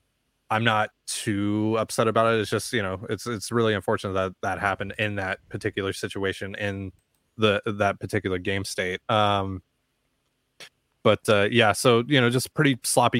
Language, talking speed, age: English, 170 wpm, 20-39